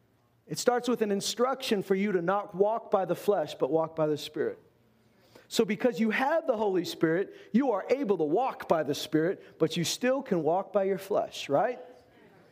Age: 40-59